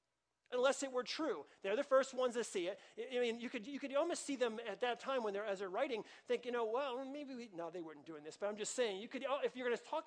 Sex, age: male, 40-59